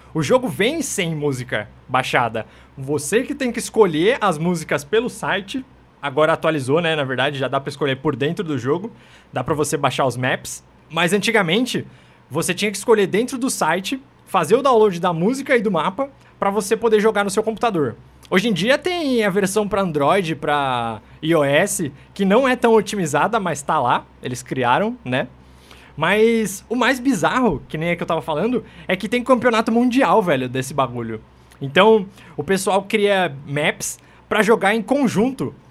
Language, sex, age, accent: Portuguese, male, 20-39, Brazilian